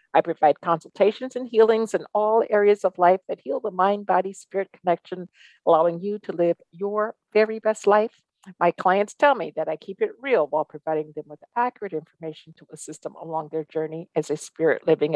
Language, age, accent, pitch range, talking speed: English, 50-69, American, 165-215 Hz, 190 wpm